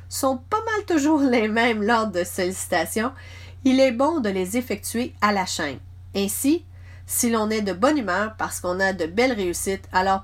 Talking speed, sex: 190 wpm, female